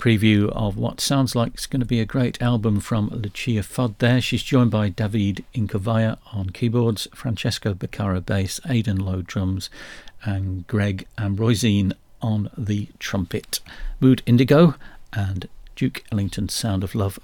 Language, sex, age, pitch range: English, male, 50-69, 100-120 Hz